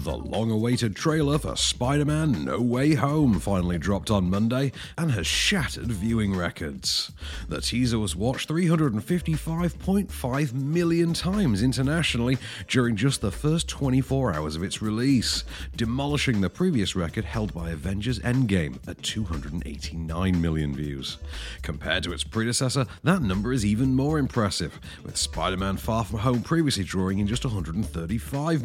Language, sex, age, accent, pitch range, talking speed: English, male, 40-59, British, 85-130 Hz, 140 wpm